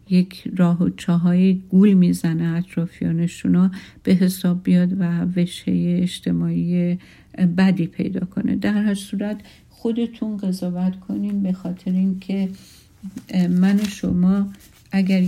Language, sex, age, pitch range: Persian, female, 50-69, 175-195 Hz